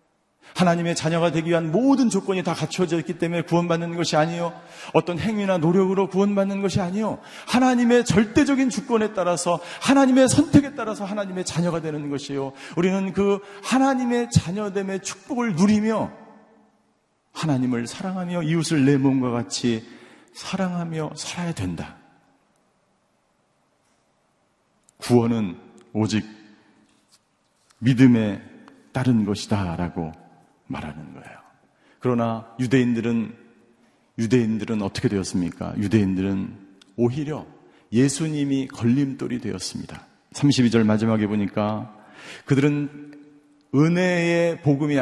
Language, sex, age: Korean, male, 40-59